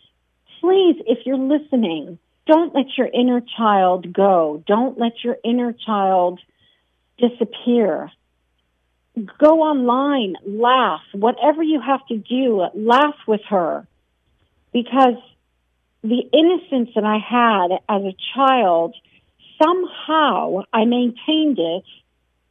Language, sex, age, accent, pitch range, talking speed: English, female, 50-69, American, 180-250 Hz, 105 wpm